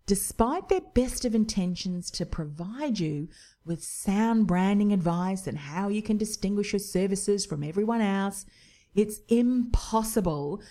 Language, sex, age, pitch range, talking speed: English, female, 40-59, 175-220 Hz, 135 wpm